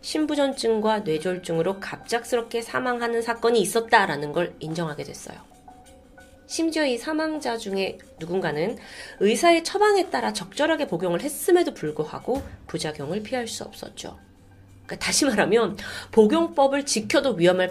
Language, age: Korean, 30-49